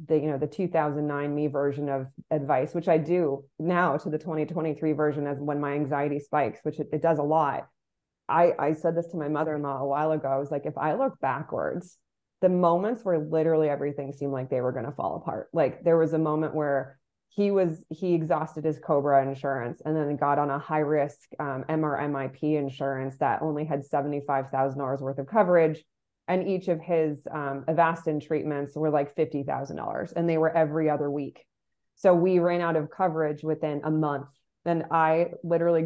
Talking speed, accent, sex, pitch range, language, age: 195 wpm, American, female, 145-165 Hz, English, 20-39